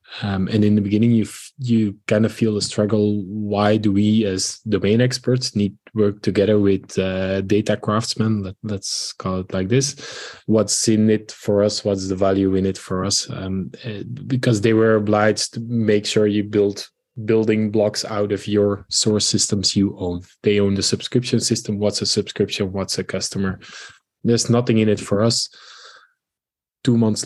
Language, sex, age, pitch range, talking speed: English, male, 20-39, 100-115 Hz, 180 wpm